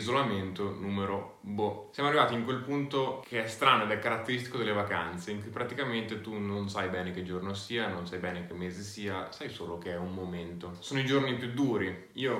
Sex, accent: male, native